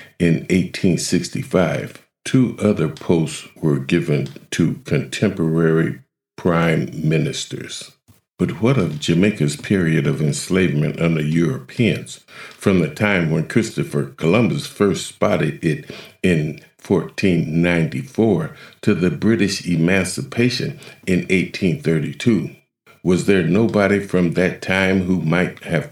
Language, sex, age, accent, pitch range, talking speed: English, male, 50-69, American, 75-95 Hz, 105 wpm